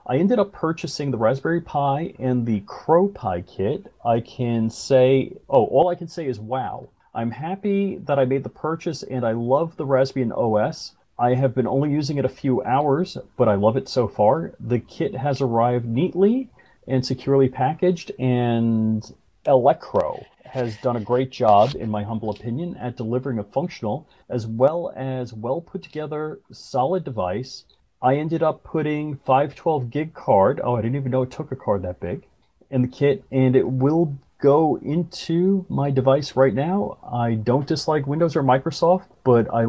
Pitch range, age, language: 125-160 Hz, 40-59, English